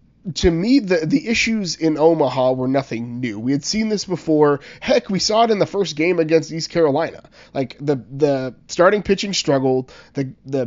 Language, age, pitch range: English, 30-49, 140-175 Hz